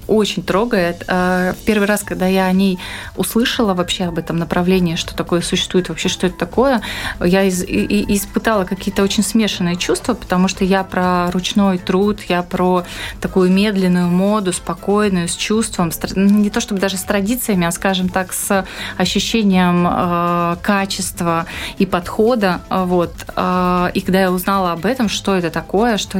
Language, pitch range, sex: Russian, 175-200 Hz, female